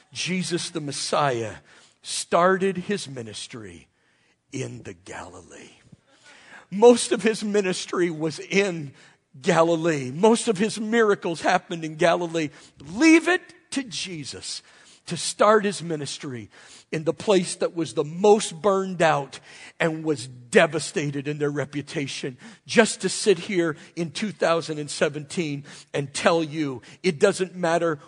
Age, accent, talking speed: 50-69, American, 125 wpm